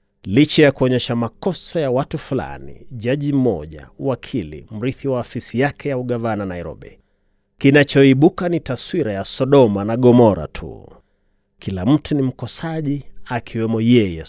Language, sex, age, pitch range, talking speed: Swahili, male, 30-49, 110-140 Hz, 130 wpm